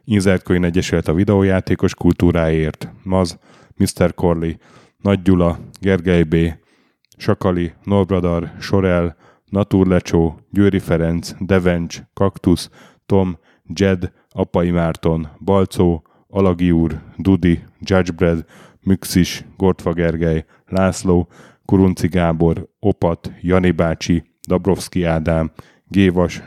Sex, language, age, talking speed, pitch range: male, Hungarian, 10-29, 90 wpm, 85-95 Hz